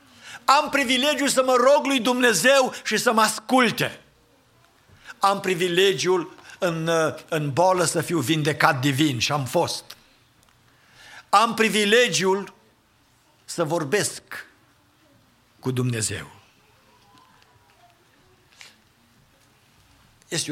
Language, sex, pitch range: English, male, 120-170 Hz